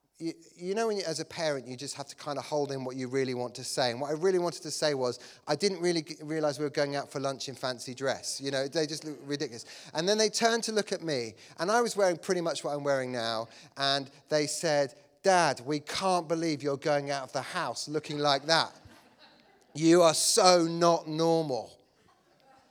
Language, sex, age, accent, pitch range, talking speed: English, male, 30-49, British, 135-165 Hz, 225 wpm